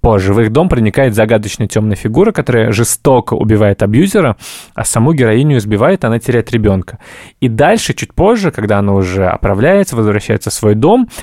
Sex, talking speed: male, 170 wpm